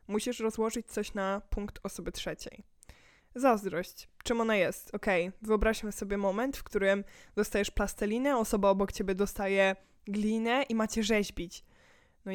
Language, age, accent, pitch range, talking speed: Polish, 10-29, native, 205-250 Hz, 135 wpm